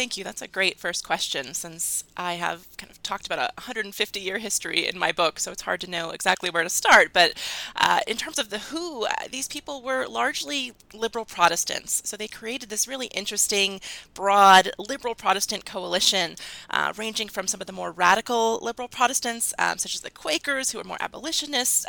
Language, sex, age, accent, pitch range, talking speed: English, female, 20-39, American, 180-225 Hz, 195 wpm